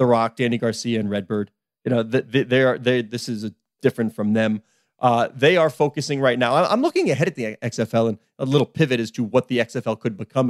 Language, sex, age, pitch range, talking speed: English, male, 30-49, 120-175 Hz, 235 wpm